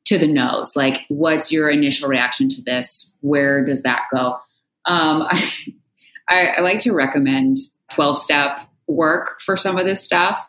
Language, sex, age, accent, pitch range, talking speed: English, female, 20-39, American, 140-195 Hz, 160 wpm